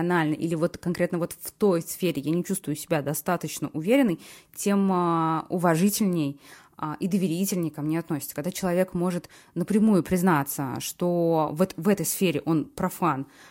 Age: 20-39